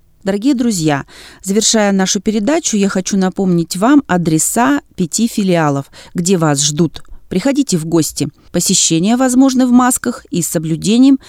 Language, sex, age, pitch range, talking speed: Russian, female, 30-49, 165-245 Hz, 135 wpm